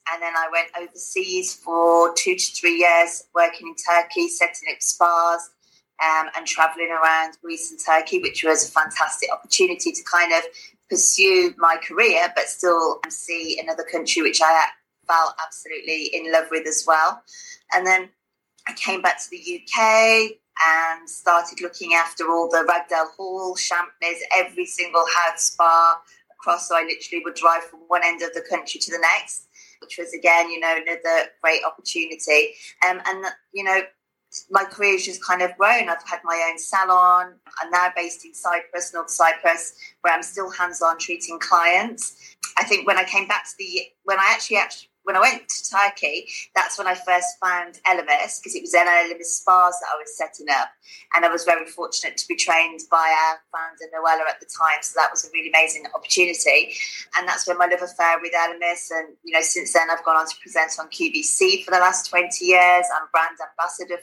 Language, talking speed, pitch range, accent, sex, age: English, 190 wpm, 165-190 Hz, British, female, 30-49